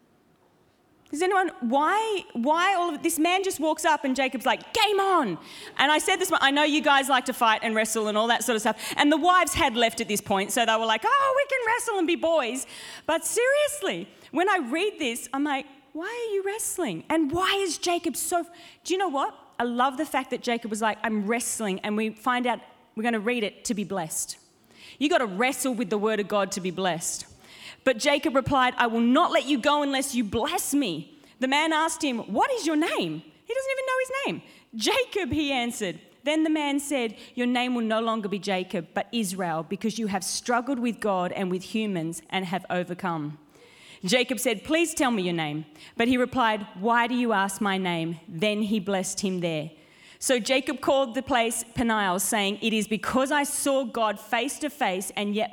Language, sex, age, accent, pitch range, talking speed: English, female, 30-49, Australian, 210-305 Hz, 220 wpm